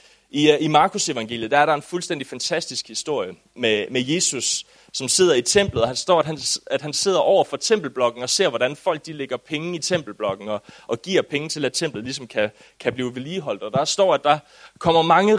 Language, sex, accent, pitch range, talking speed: English, male, Danish, 140-200 Hz, 220 wpm